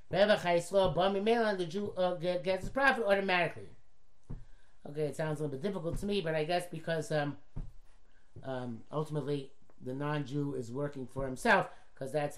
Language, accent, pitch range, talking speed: English, American, 150-210 Hz, 160 wpm